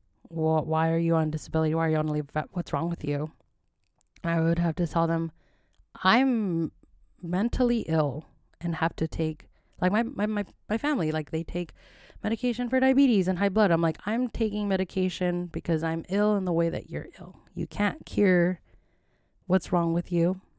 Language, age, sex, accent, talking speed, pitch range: English, 20-39, female, American, 185 wpm, 155-190 Hz